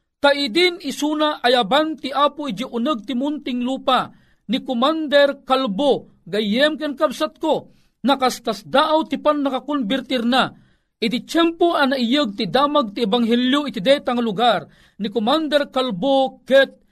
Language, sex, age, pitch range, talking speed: Filipino, male, 40-59, 215-275 Hz, 130 wpm